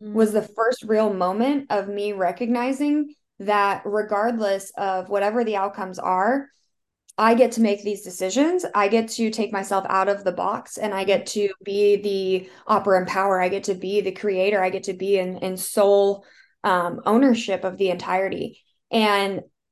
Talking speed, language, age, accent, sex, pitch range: 175 wpm, English, 20-39, American, female, 180-210 Hz